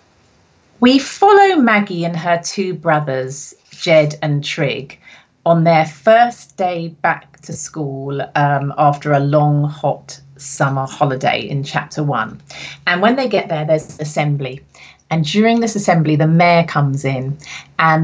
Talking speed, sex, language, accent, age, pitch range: 145 wpm, female, English, British, 30-49, 145-180 Hz